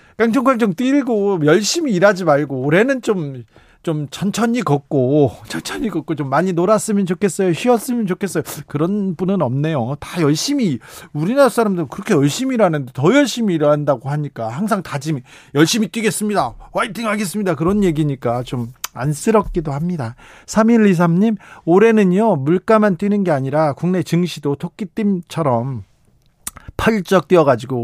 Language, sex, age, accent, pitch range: Korean, male, 40-59, native, 140-195 Hz